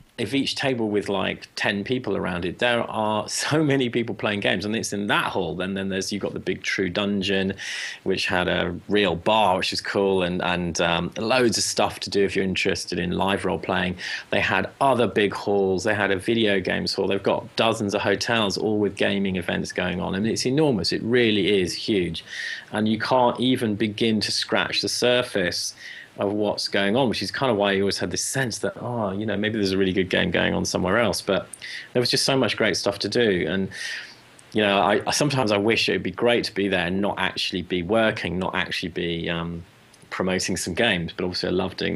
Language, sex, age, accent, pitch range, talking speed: English, male, 30-49, British, 90-110 Hz, 225 wpm